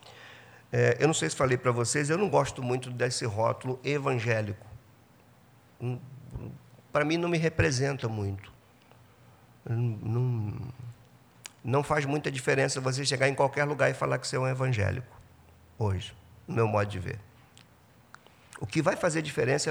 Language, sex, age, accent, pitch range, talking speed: Portuguese, male, 50-69, Brazilian, 115-140 Hz, 145 wpm